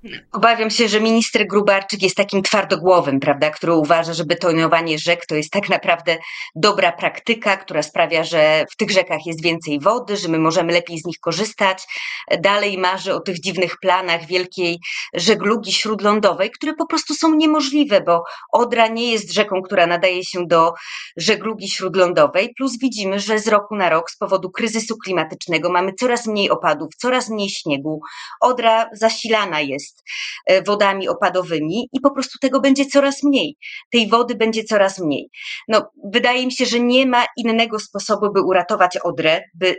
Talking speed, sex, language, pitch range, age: 160 wpm, female, Polish, 180-230 Hz, 30-49